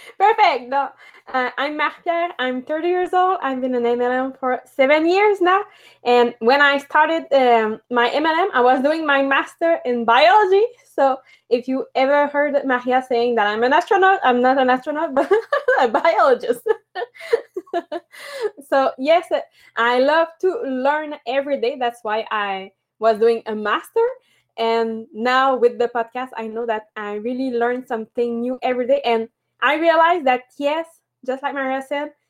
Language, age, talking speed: English, 20-39, 165 wpm